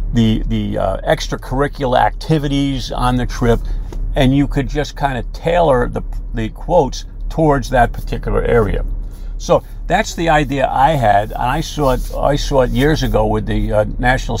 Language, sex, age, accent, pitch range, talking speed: English, male, 50-69, American, 110-140 Hz, 170 wpm